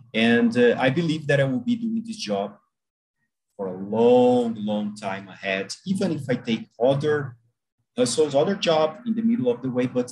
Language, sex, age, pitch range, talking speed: Portuguese, male, 40-59, 120-200 Hz, 190 wpm